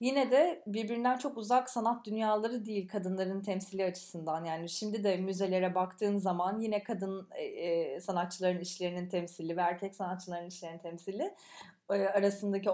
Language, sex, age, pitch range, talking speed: English, female, 20-39, 180-215 Hz, 130 wpm